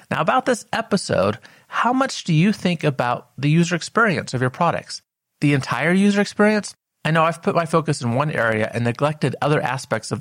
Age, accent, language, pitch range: 30-49, American, English, 125-175 Hz